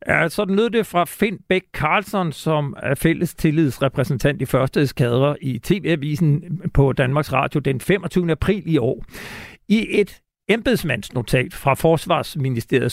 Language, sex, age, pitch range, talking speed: Danish, male, 50-69, 135-180 Hz, 140 wpm